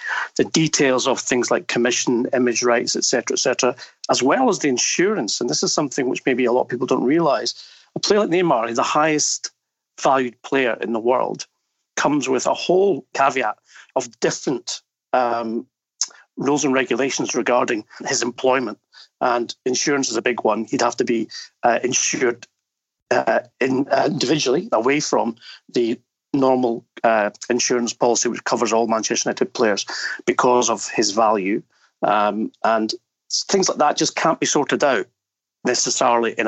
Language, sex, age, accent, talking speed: English, male, 40-59, British, 165 wpm